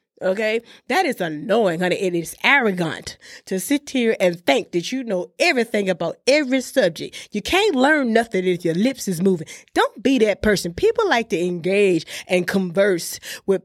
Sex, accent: female, American